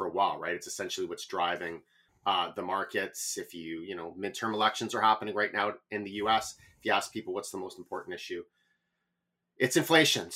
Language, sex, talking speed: English, male, 195 wpm